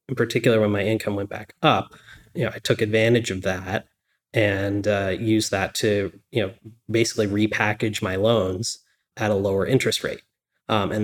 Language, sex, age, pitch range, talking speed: English, male, 20-39, 100-115 Hz, 180 wpm